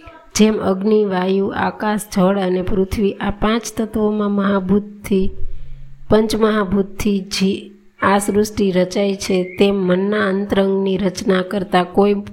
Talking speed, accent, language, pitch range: 100 wpm, native, Gujarati, 185-205 Hz